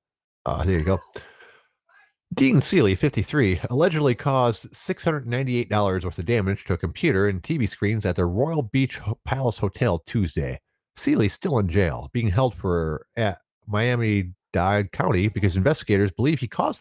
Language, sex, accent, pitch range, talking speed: English, male, American, 85-125 Hz, 170 wpm